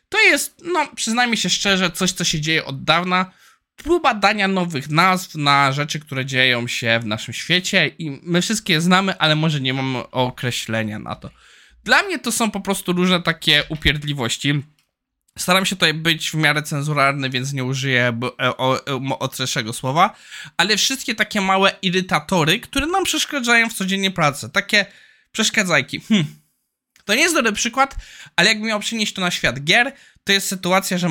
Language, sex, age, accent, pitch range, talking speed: Polish, male, 20-39, native, 140-195 Hz, 175 wpm